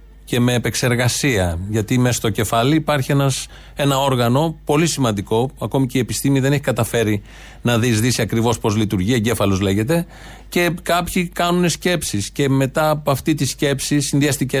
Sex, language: male, Greek